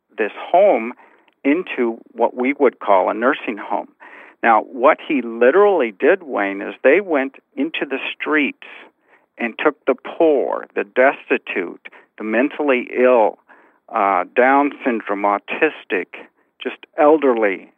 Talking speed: 125 wpm